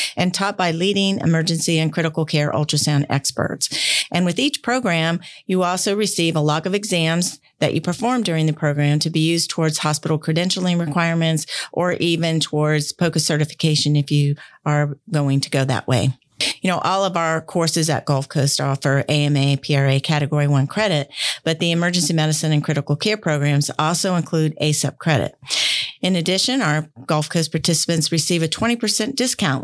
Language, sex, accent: English, female, American